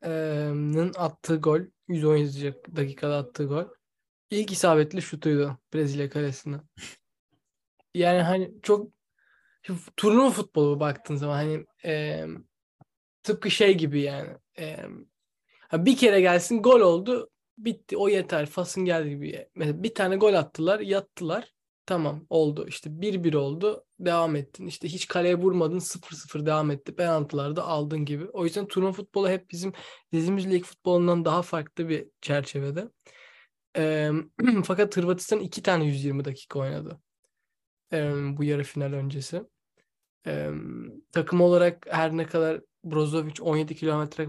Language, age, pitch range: Turkish, 20-39, 150-185 Hz